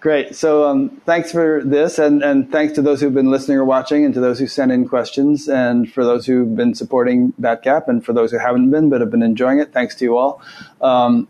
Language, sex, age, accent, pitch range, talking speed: English, male, 30-49, American, 125-150 Hz, 245 wpm